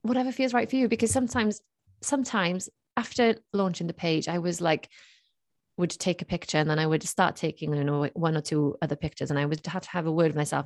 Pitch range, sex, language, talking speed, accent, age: 150-180 Hz, female, English, 235 wpm, British, 30-49